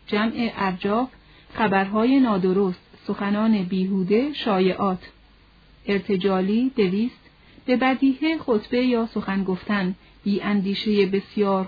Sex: female